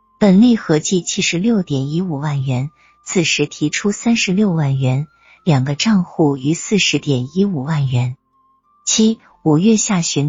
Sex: female